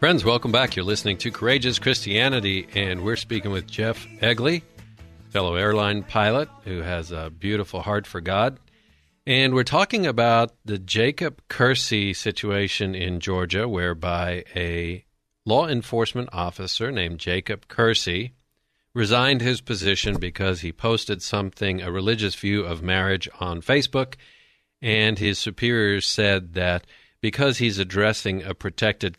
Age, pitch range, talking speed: 50-69, 95-120 Hz, 135 wpm